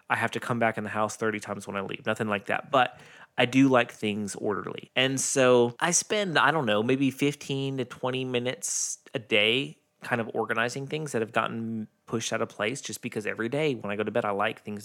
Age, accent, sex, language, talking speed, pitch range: 20-39, American, male, English, 240 wpm, 105-130 Hz